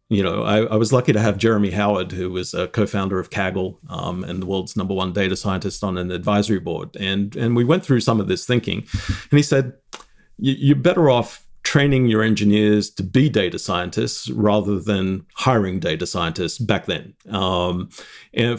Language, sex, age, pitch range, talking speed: English, male, 40-59, 100-125 Hz, 190 wpm